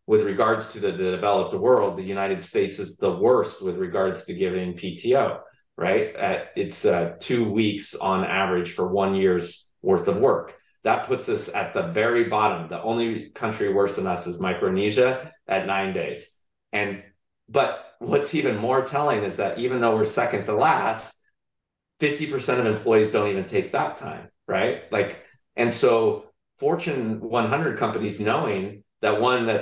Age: 30-49